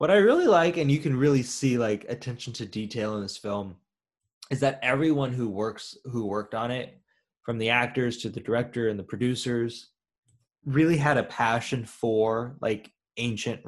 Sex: male